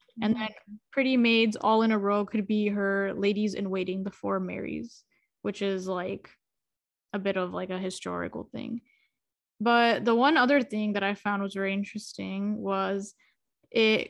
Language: English